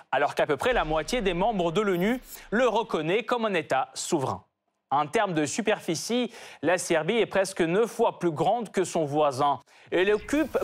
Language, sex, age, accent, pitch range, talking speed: French, male, 30-49, French, 155-235 Hz, 185 wpm